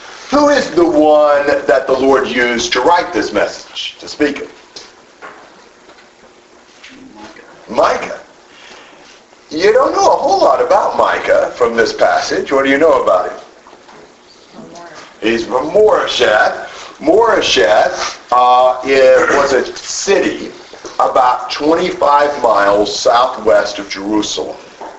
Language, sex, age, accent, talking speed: English, male, 50-69, American, 115 wpm